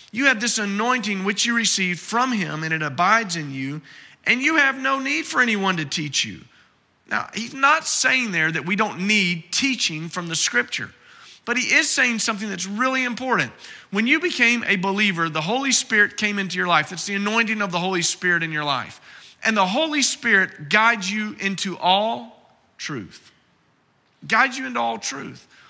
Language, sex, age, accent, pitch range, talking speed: English, male, 40-59, American, 185-235 Hz, 190 wpm